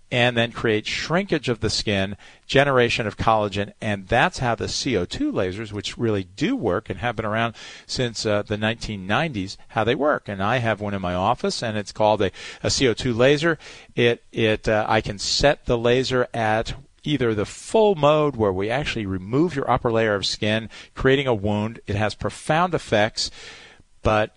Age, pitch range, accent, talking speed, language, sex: 40-59, 105-130 Hz, American, 185 wpm, English, male